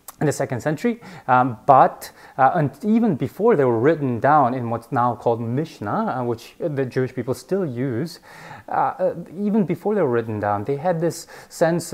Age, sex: 30-49, male